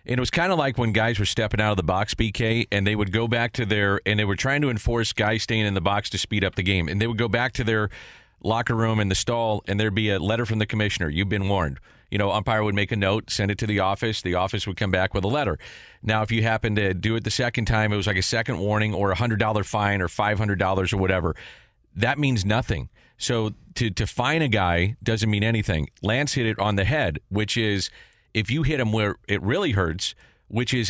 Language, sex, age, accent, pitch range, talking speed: English, male, 40-59, American, 100-120 Hz, 265 wpm